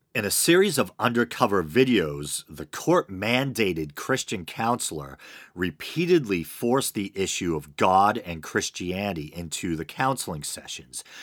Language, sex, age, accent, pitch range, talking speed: English, male, 40-59, American, 80-115 Hz, 120 wpm